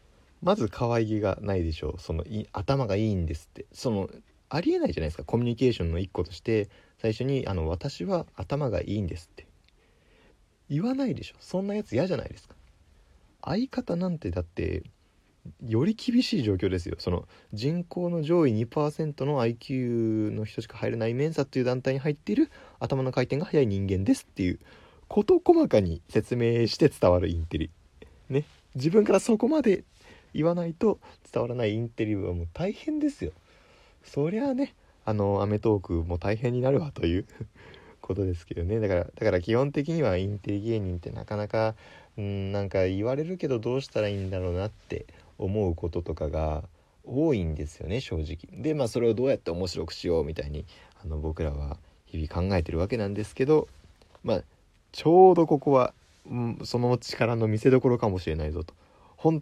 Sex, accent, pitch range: male, native, 90-140 Hz